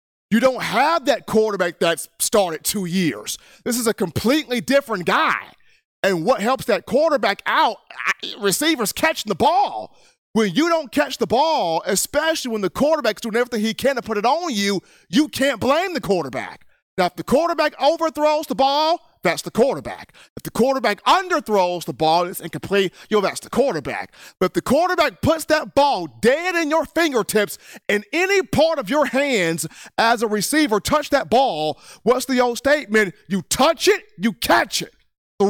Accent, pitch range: American, 205-305 Hz